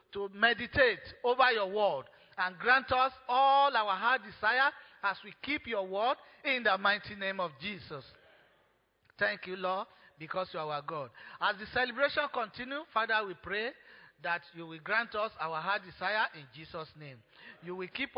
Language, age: English, 40-59